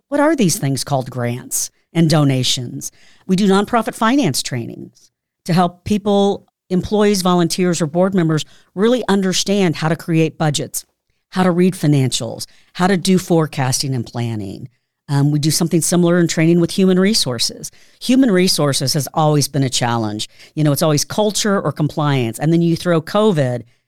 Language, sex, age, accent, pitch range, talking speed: English, female, 50-69, American, 135-175 Hz, 165 wpm